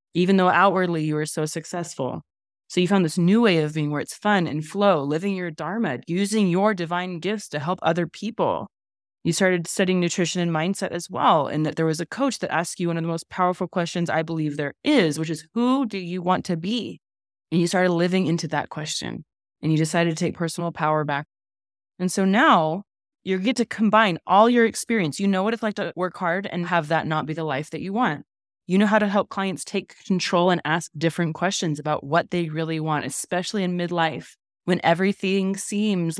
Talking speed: 220 wpm